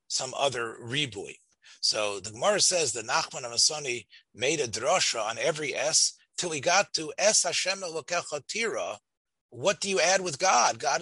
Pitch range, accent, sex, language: 130-200 Hz, American, male, English